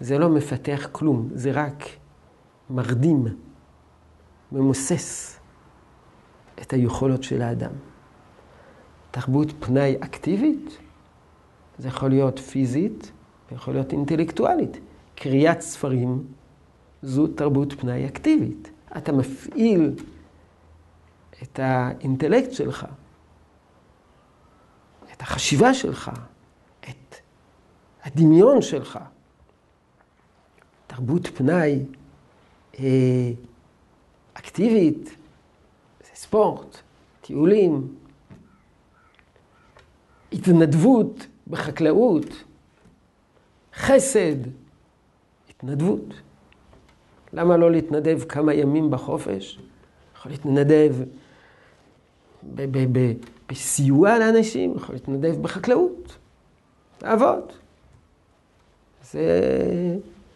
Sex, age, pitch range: male, 50-69, 115-155 Hz